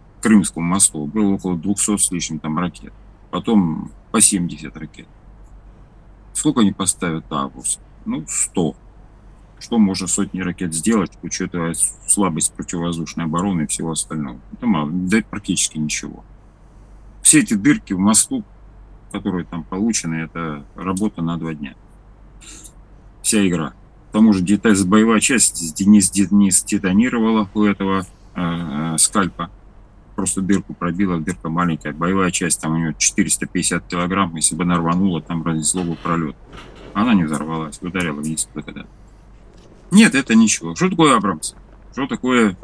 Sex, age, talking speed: male, 40-59, 135 wpm